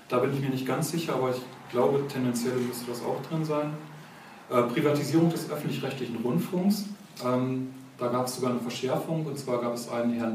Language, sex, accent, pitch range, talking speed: German, male, German, 120-145 Hz, 195 wpm